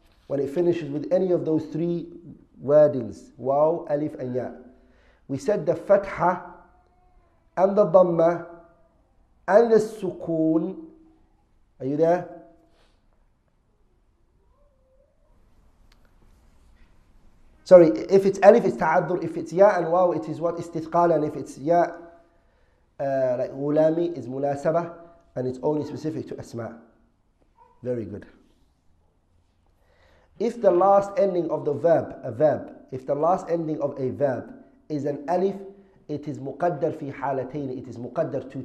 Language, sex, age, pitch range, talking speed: English, male, 40-59, 130-170 Hz, 135 wpm